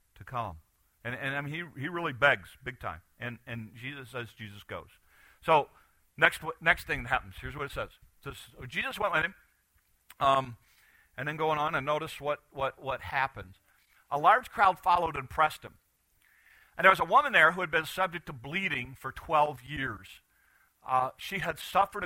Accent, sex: American, male